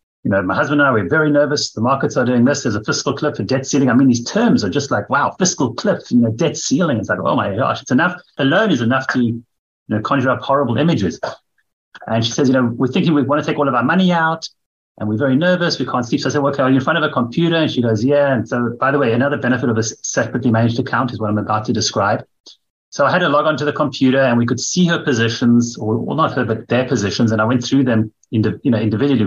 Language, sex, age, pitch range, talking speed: English, male, 30-49, 110-140 Hz, 280 wpm